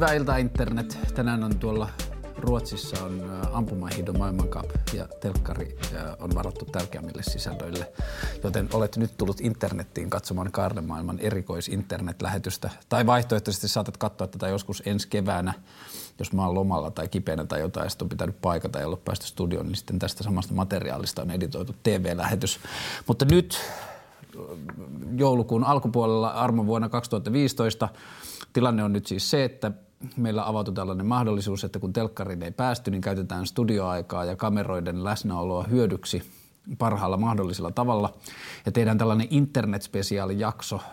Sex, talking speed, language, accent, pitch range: male, 140 wpm, Finnish, native, 95-115 Hz